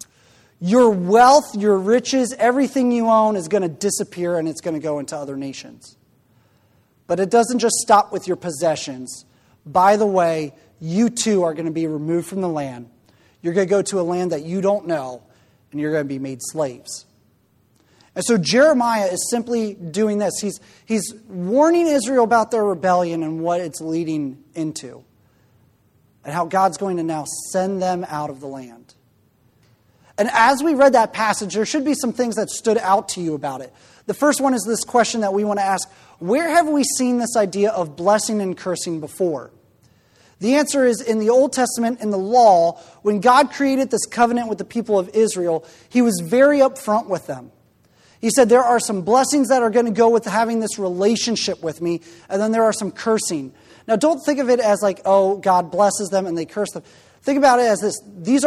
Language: English